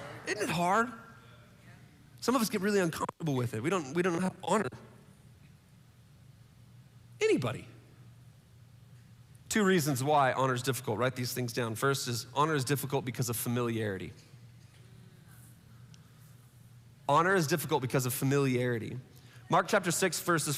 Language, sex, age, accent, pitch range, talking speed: English, male, 30-49, American, 125-165 Hz, 135 wpm